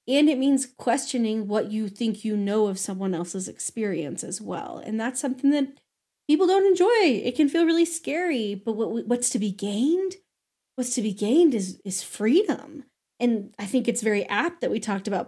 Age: 20-39